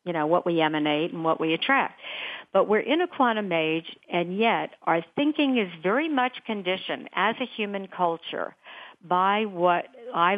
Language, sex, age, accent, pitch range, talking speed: English, female, 50-69, American, 165-220 Hz, 175 wpm